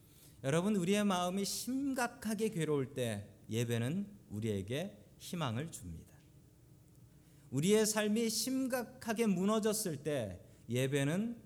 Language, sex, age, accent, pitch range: Korean, male, 40-59, native, 125-185 Hz